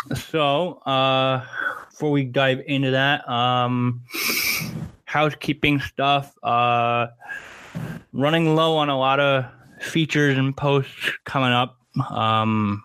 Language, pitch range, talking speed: English, 115-140 Hz, 105 wpm